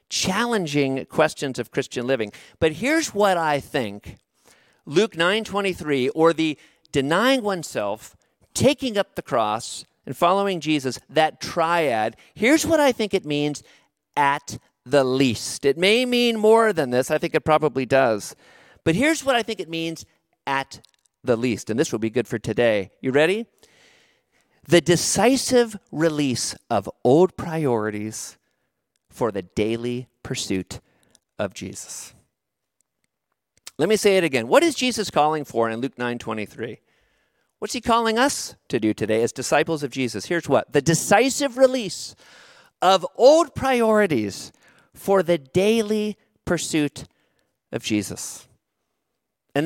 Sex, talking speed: male, 140 wpm